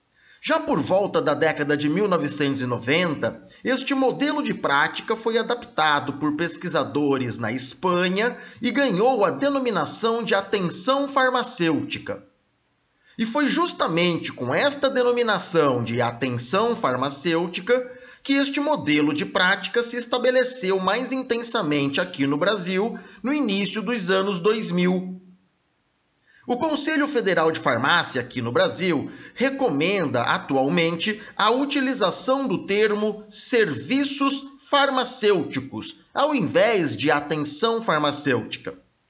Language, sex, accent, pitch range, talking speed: Portuguese, male, Brazilian, 160-265 Hz, 110 wpm